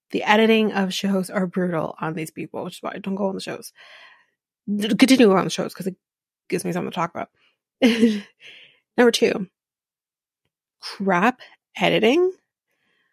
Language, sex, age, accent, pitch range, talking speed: English, female, 30-49, American, 190-235 Hz, 155 wpm